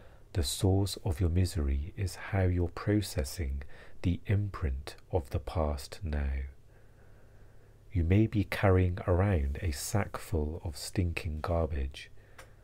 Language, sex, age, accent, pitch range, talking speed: English, male, 40-59, British, 80-105 Hz, 125 wpm